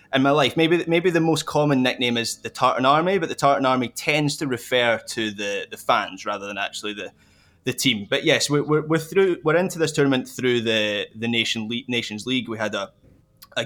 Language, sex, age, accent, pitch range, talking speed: English, male, 20-39, British, 115-145 Hz, 225 wpm